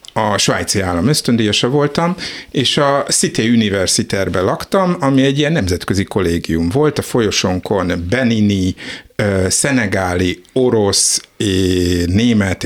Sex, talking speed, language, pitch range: male, 110 wpm, Hungarian, 95-120 Hz